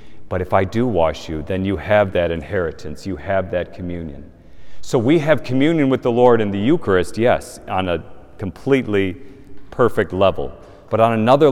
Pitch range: 95-115 Hz